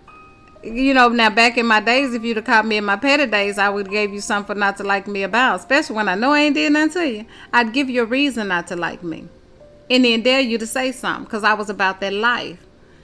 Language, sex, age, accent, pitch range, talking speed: English, female, 30-49, American, 170-210 Hz, 270 wpm